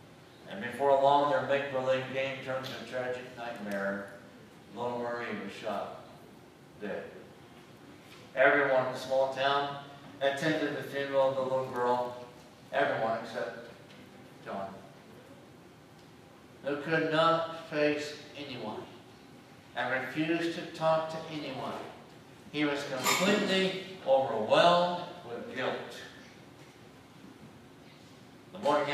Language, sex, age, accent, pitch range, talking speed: English, male, 60-79, American, 120-145 Hz, 105 wpm